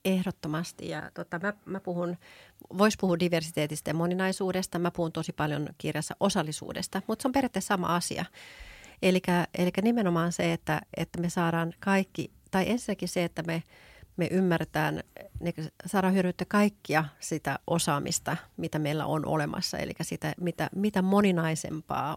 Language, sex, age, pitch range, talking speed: Finnish, female, 40-59, 165-185 Hz, 140 wpm